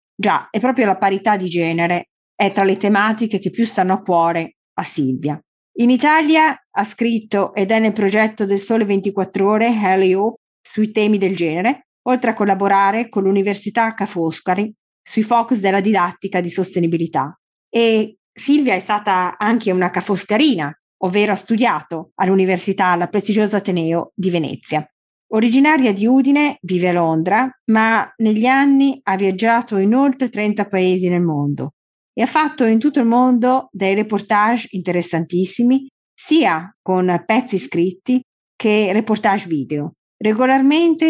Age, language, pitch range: 20-39, Italian, 180-235 Hz